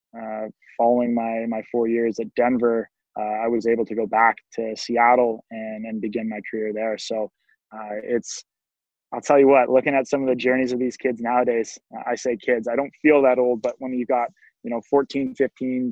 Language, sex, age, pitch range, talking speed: English, male, 20-39, 115-130 Hz, 210 wpm